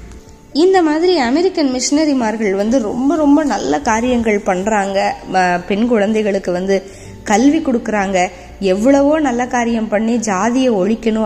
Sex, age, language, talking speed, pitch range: female, 20-39, Tamil, 110 wpm, 200-265 Hz